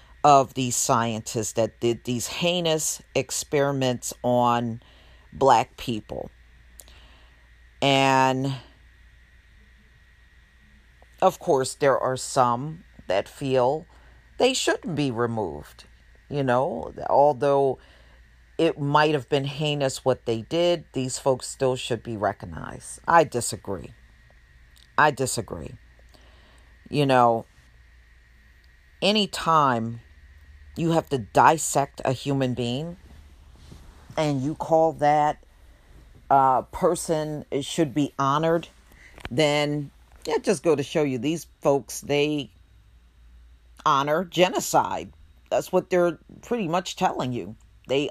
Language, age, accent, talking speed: English, 40-59, American, 105 wpm